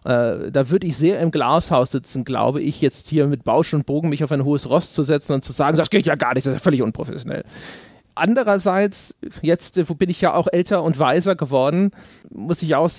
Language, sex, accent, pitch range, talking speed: German, male, German, 145-180 Hz, 220 wpm